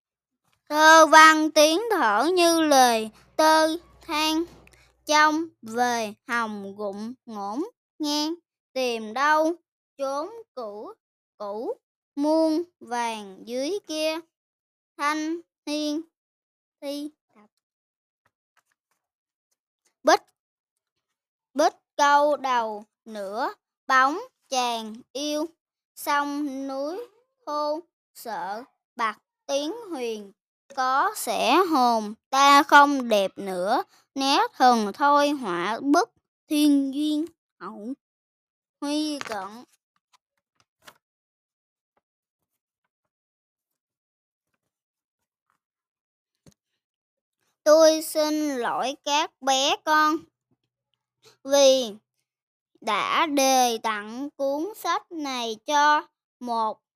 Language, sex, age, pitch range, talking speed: Vietnamese, male, 10-29, 245-320 Hz, 75 wpm